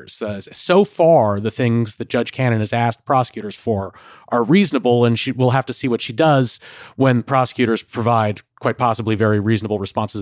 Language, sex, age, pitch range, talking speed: English, male, 30-49, 115-145 Hz, 175 wpm